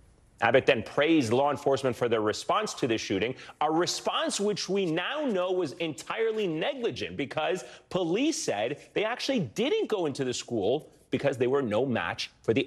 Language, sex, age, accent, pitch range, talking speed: English, male, 30-49, American, 125-205 Hz, 175 wpm